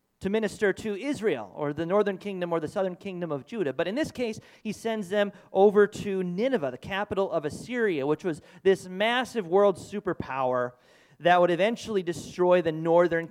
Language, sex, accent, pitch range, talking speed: English, male, American, 150-195 Hz, 180 wpm